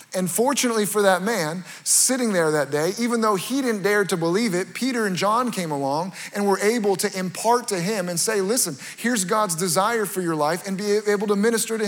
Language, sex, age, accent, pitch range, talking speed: English, male, 30-49, American, 165-215 Hz, 220 wpm